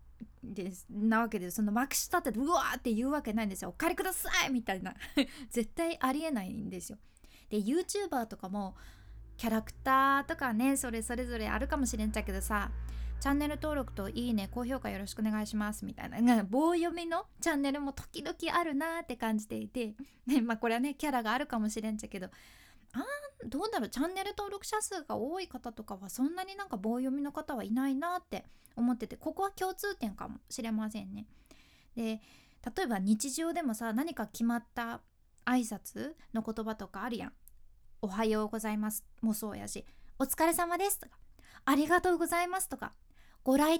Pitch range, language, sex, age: 220-310 Hz, Japanese, female, 20-39